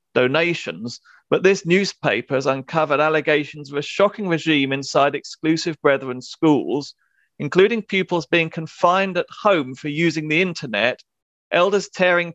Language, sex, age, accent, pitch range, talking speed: English, male, 40-59, British, 140-170 Hz, 130 wpm